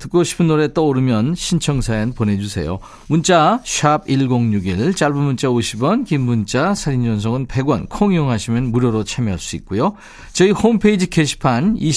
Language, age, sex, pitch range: Korean, 40-59, male, 110-160 Hz